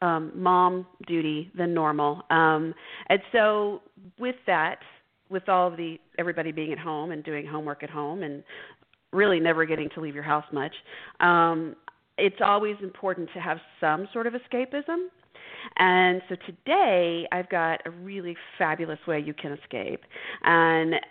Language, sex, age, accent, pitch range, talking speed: English, female, 40-59, American, 165-220 Hz, 155 wpm